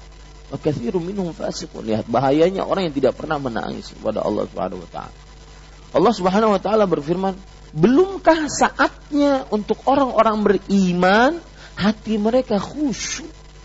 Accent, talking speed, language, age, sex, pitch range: Indonesian, 110 wpm, English, 40-59, male, 165-260 Hz